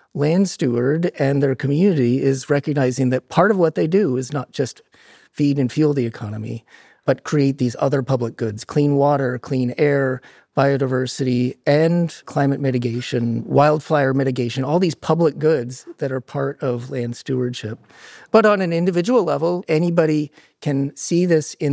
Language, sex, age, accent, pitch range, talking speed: English, male, 40-59, American, 130-160 Hz, 155 wpm